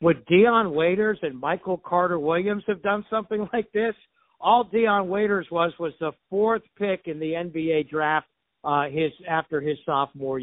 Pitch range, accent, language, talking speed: 170-205 Hz, American, English, 165 wpm